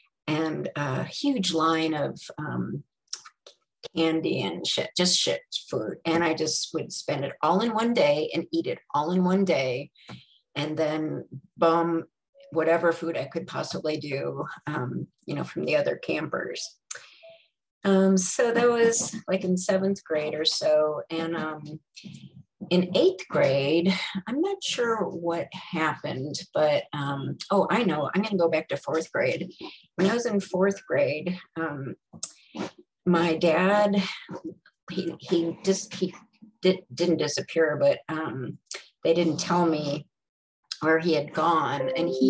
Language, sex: English, female